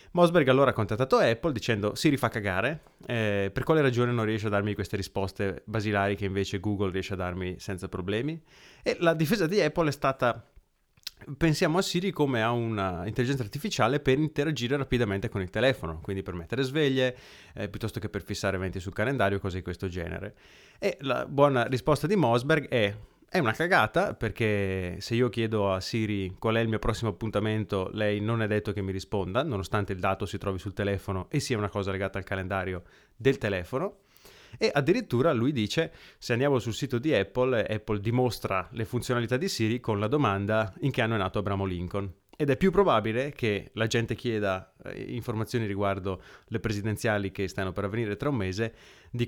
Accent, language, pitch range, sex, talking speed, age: native, Italian, 100-125 Hz, male, 190 wpm, 30-49